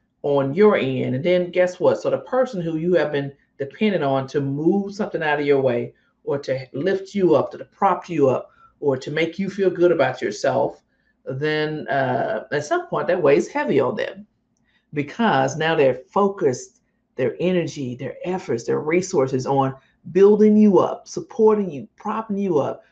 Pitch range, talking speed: 140-195 Hz, 180 wpm